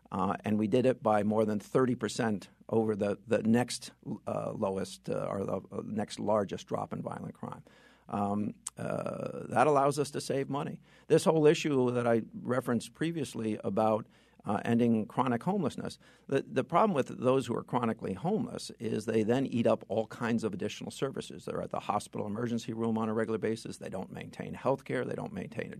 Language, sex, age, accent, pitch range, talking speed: English, male, 50-69, American, 110-150 Hz, 195 wpm